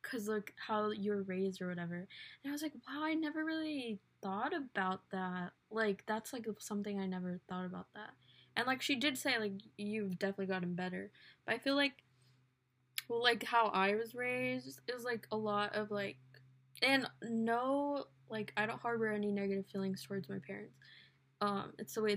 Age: 10-29